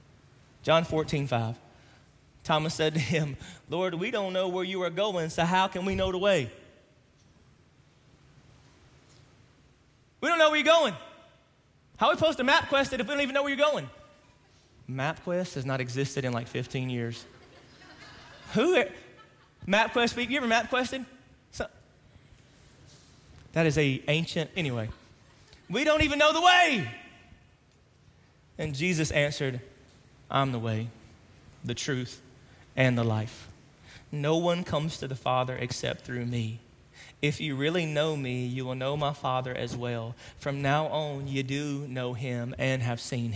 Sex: male